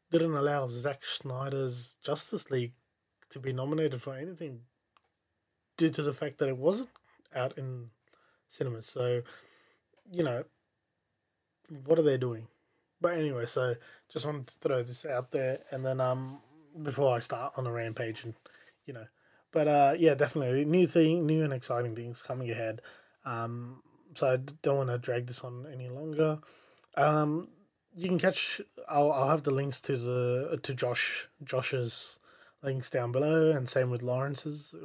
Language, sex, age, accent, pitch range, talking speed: English, male, 20-39, Australian, 125-150 Hz, 165 wpm